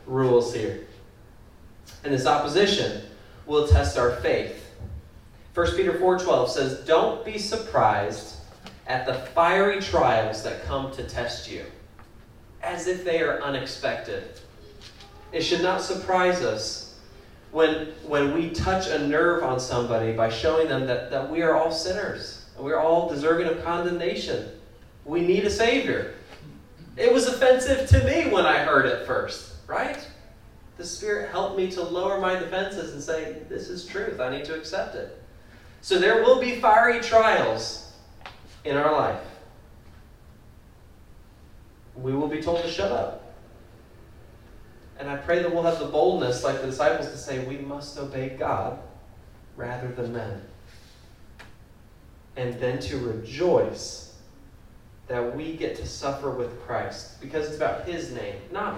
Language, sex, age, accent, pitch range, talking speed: English, male, 30-49, American, 115-175 Hz, 145 wpm